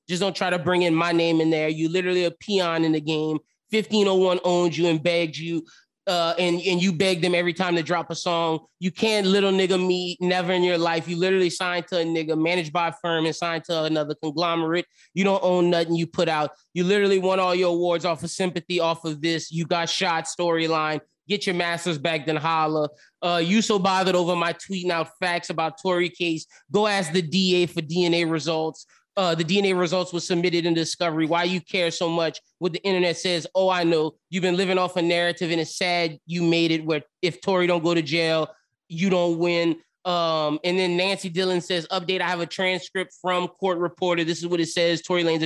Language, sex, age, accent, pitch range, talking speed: English, male, 20-39, American, 165-180 Hz, 225 wpm